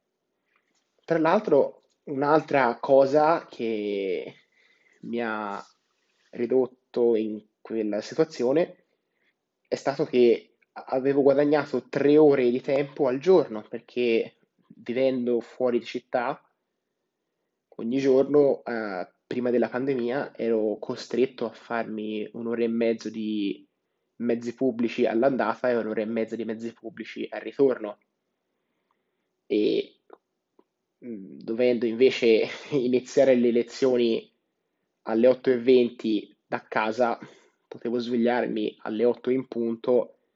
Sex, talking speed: male, 105 wpm